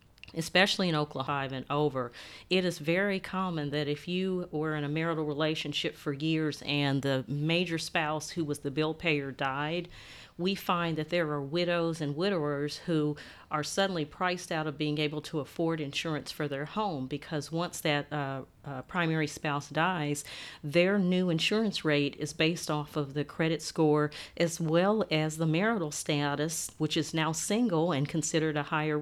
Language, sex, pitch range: English, female, 145-170 Hz